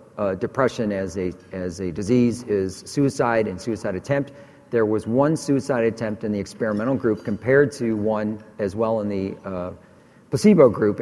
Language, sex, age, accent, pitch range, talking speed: English, male, 40-59, American, 105-125 Hz, 170 wpm